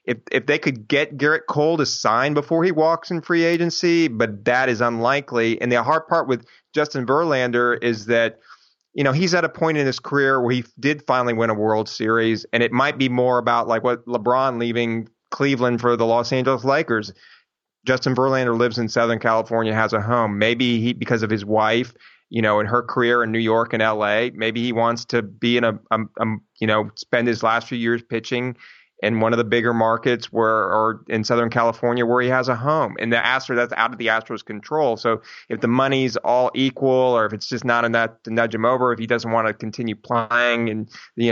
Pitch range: 115-130 Hz